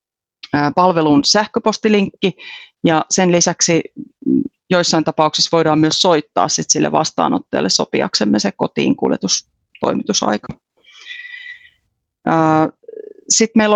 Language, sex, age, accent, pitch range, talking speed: Finnish, female, 30-49, native, 150-195 Hz, 80 wpm